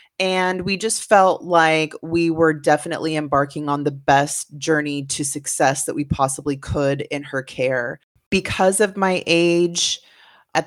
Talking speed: 150 wpm